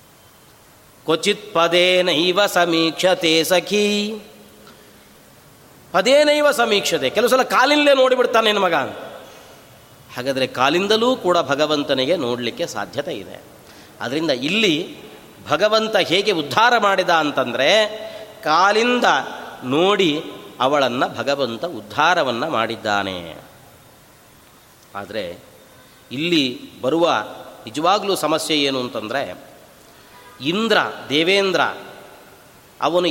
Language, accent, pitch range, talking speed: Kannada, native, 145-210 Hz, 75 wpm